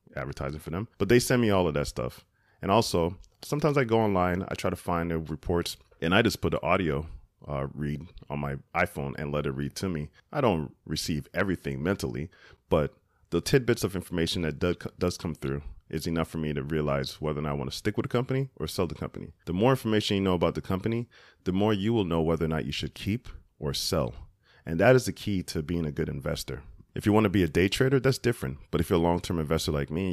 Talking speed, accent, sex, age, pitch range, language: 245 wpm, American, male, 30-49, 75-100 Hz, English